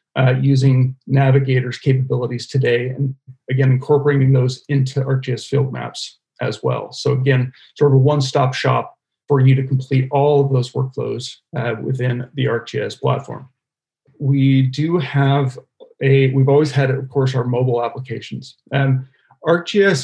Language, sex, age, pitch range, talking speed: English, male, 40-59, 130-140 Hz, 155 wpm